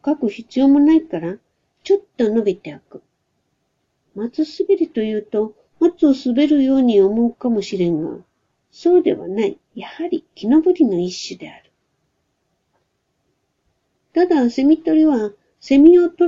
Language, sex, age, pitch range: Japanese, female, 60-79, 215-320 Hz